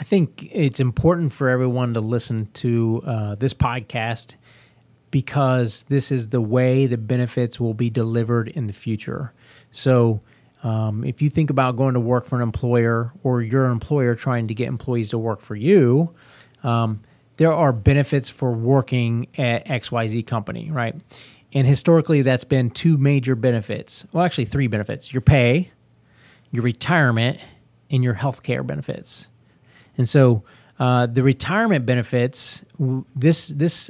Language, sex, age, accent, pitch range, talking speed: English, male, 30-49, American, 120-140 Hz, 150 wpm